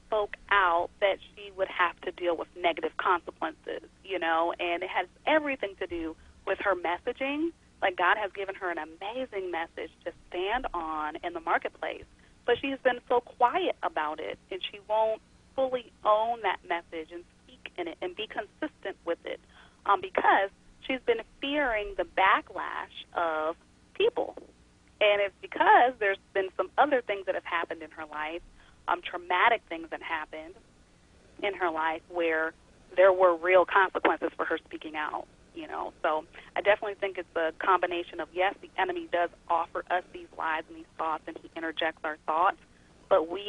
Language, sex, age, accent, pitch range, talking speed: English, female, 30-49, American, 165-235 Hz, 175 wpm